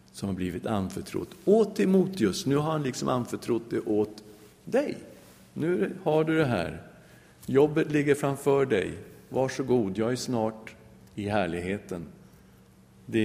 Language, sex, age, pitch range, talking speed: English, male, 50-69, 110-150 Hz, 145 wpm